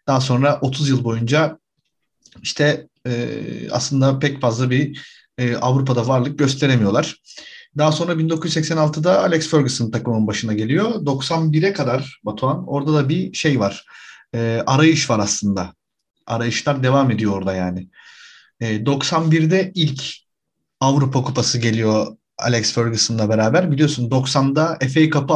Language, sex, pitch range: Turkish, male, 115-160 Hz